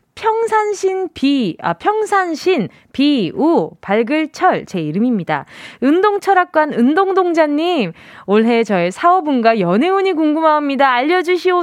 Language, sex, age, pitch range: Korean, female, 20-39, 215-360 Hz